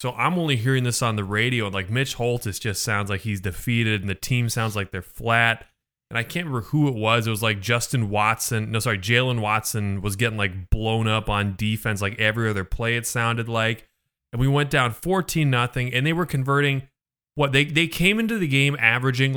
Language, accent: English, American